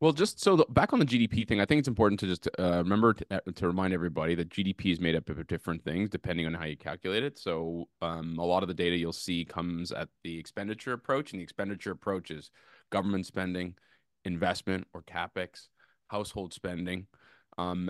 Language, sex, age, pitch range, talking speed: English, male, 20-39, 85-105 Hz, 205 wpm